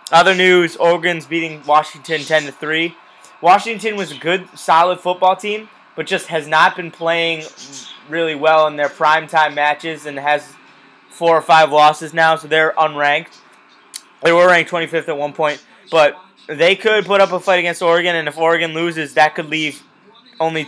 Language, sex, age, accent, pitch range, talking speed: English, male, 20-39, American, 150-180 Hz, 175 wpm